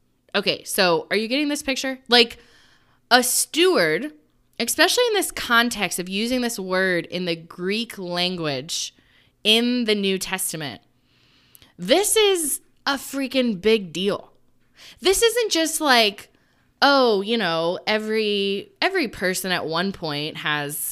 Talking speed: 130 wpm